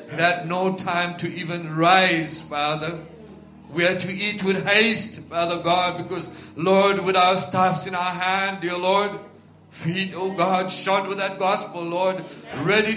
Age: 60-79